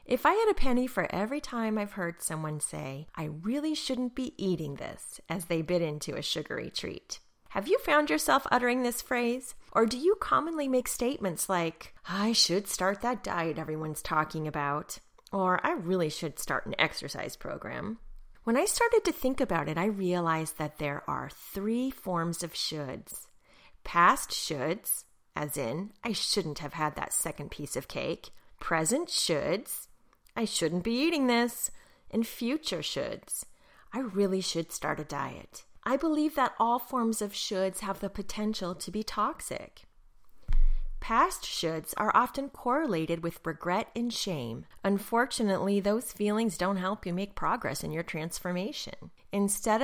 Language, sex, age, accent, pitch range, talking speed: English, female, 30-49, American, 165-245 Hz, 160 wpm